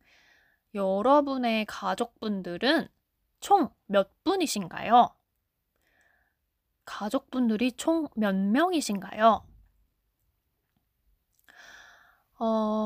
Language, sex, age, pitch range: Korean, female, 20-39, 195-255 Hz